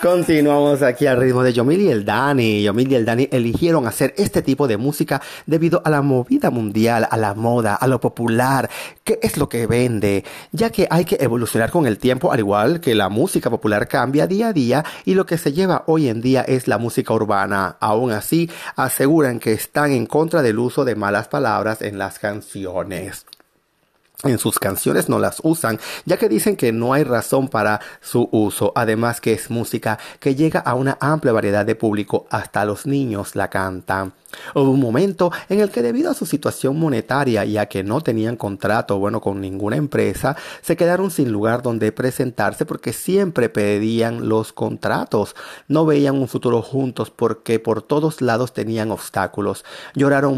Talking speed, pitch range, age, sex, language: 185 wpm, 110-150 Hz, 40-59, male, Spanish